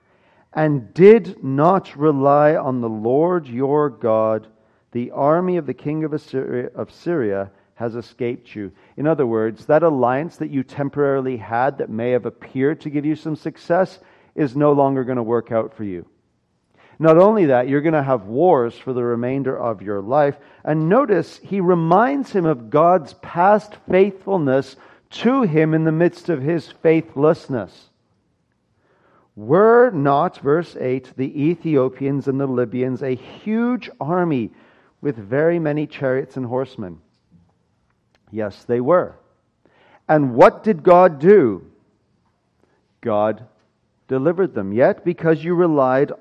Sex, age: male, 40-59